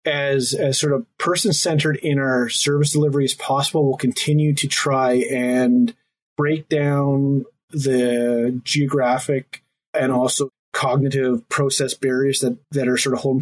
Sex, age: male, 30-49